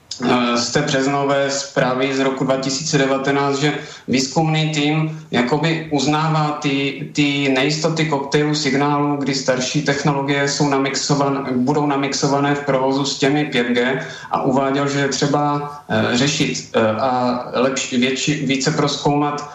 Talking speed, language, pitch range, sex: 125 wpm, Slovak, 135-145 Hz, male